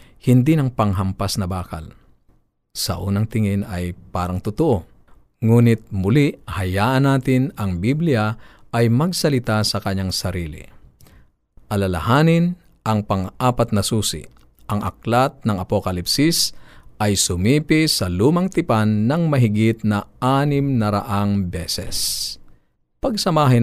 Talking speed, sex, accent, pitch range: 110 wpm, male, native, 100-125 Hz